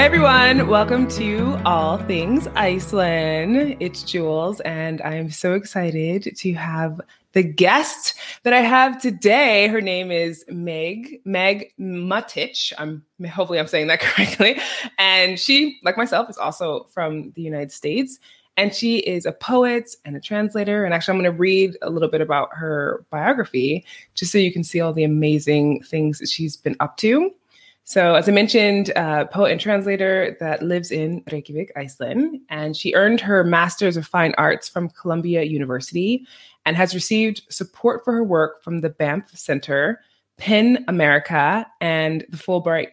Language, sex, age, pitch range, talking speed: English, female, 20-39, 160-215 Hz, 165 wpm